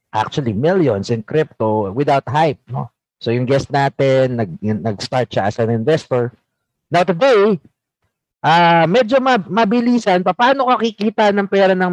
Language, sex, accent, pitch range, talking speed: Filipino, male, native, 130-195 Hz, 150 wpm